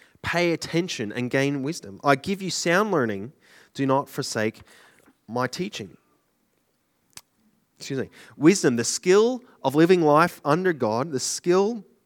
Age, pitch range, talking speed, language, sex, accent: 20-39, 115-155 Hz, 135 wpm, English, male, Australian